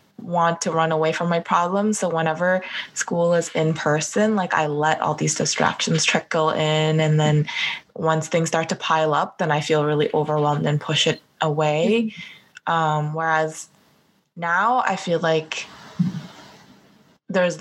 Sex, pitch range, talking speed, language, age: female, 160-200 Hz, 155 wpm, English, 20-39